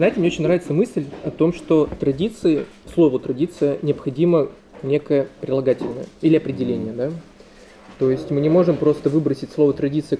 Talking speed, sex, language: 140 wpm, male, Russian